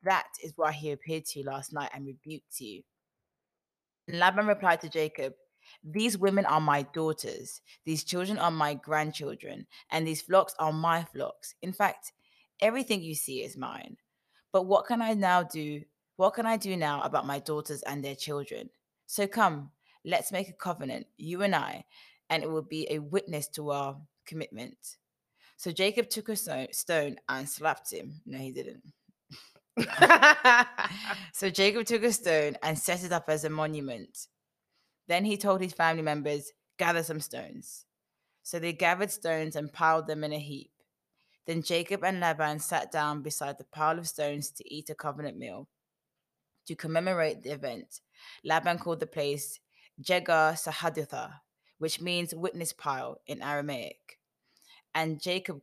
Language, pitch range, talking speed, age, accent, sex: English, 150-185 Hz, 160 wpm, 20-39, British, female